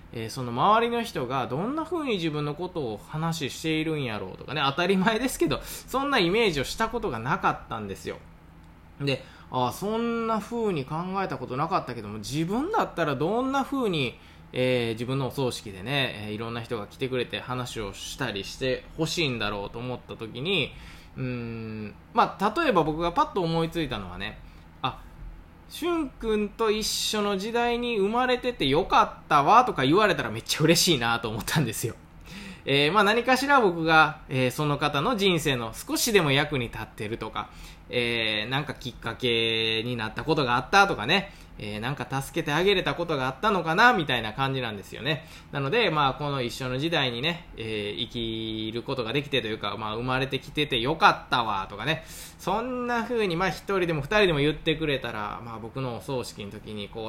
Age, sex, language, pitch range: 20-39, male, Japanese, 115-180 Hz